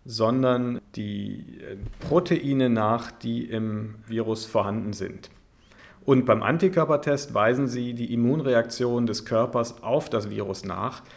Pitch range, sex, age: 105-130 Hz, male, 50-69